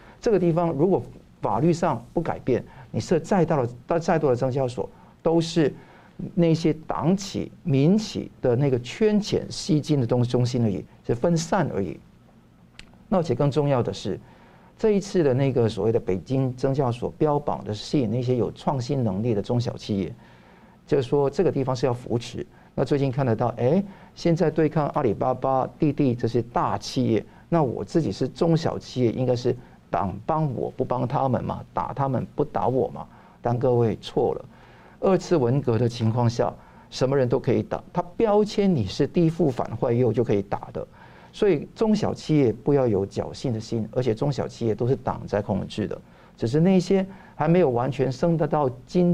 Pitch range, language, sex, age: 120-165 Hz, Chinese, male, 50-69